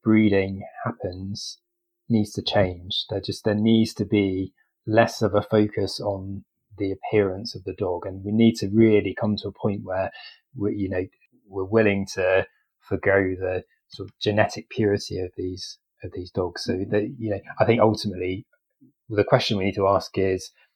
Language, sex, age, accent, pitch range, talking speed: English, male, 30-49, British, 95-115 Hz, 180 wpm